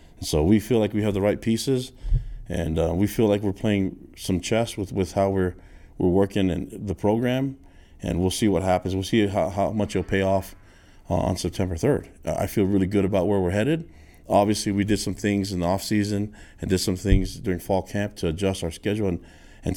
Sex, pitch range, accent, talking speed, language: male, 85-105 Hz, American, 225 wpm, English